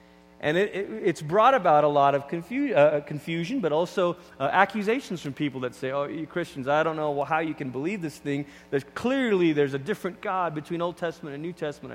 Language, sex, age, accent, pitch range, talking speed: English, male, 30-49, American, 130-180 Hz, 220 wpm